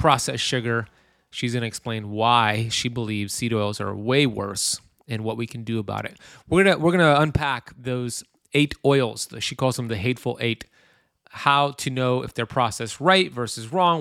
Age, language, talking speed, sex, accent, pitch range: 30-49, English, 195 wpm, male, American, 115-145 Hz